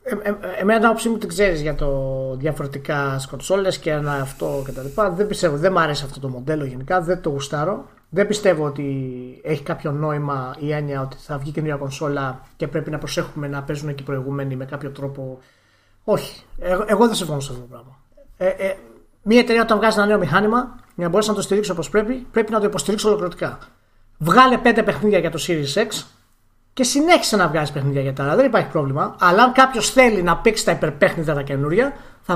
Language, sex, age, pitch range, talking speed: Greek, male, 30-49, 140-205 Hz, 195 wpm